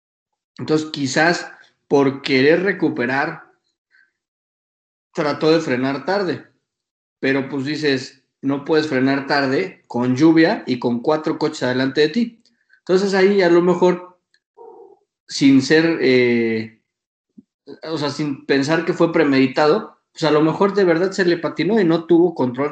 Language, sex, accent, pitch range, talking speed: Spanish, male, Mexican, 130-165 Hz, 140 wpm